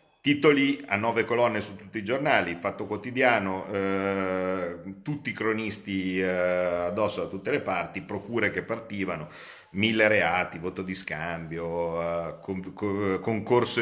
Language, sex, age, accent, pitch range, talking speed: Italian, male, 40-59, native, 90-105 Hz, 130 wpm